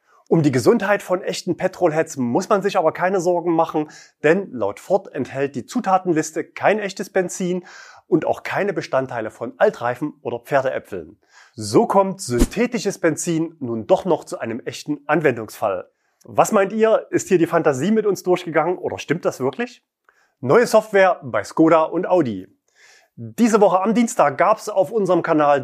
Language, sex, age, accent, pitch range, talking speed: German, male, 30-49, German, 145-195 Hz, 165 wpm